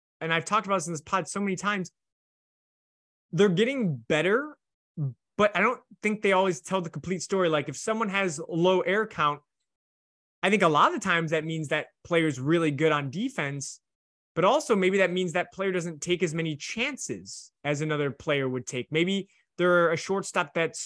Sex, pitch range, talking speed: male, 155-205 Hz, 195 wpm